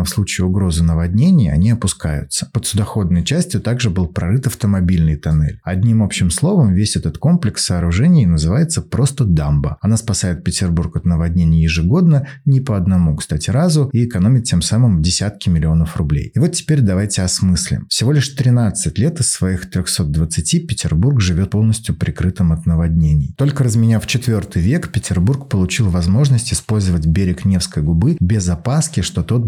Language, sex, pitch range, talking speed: Russian, male, 85-120 Hz, 155 wpm